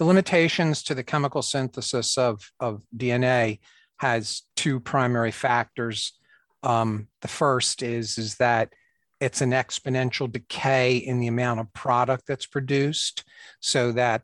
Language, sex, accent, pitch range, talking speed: English, male, American, 115-130 Hz, 135 wpm